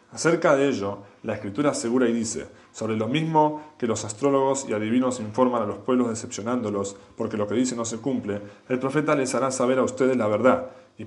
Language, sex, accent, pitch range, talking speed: English, male, Argentinian, 115-145 Hz, 205 wpm